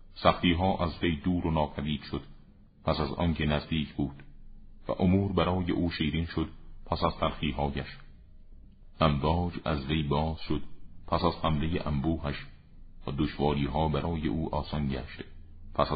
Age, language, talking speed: 50-69, Persian, 145 wpm